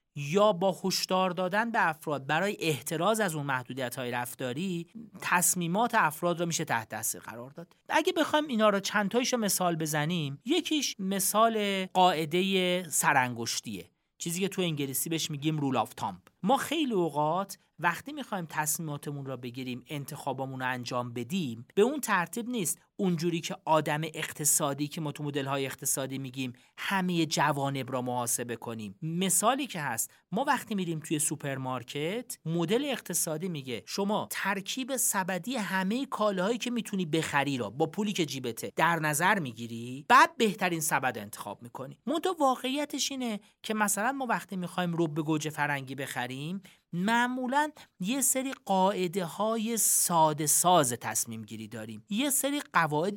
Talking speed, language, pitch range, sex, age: 145 wpm, Persian, 145-210 Hz, male, 40-59